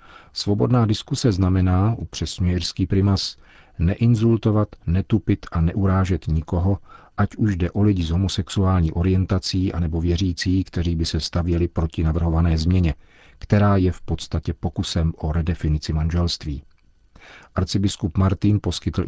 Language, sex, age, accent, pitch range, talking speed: Czech, male, 40-59, native, 80-95 Hz, 125 wpm